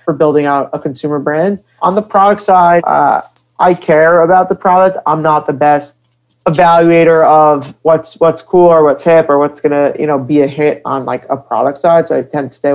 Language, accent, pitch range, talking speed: English, American, 145-175 Hz, 210 wpm